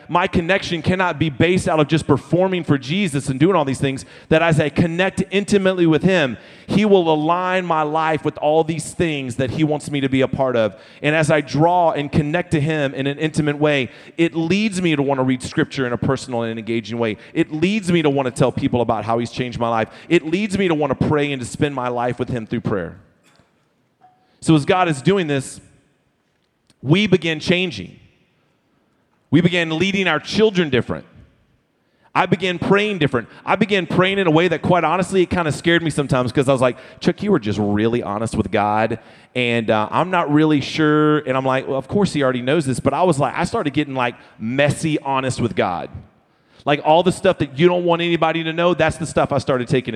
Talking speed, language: 225 wpm, English